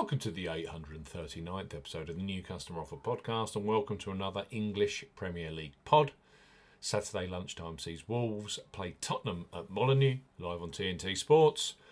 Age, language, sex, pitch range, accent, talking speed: 40-59, English, male, 95-110 Hz, British, 155 wpm